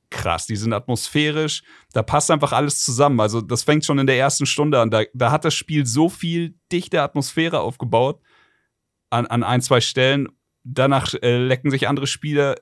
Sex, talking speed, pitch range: male, 185 wpm, 120-145 Hz